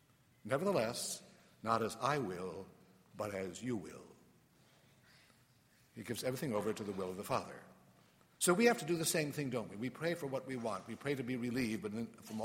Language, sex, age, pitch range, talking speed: English, male, 60-79, 115-145 Hz, 200 wpm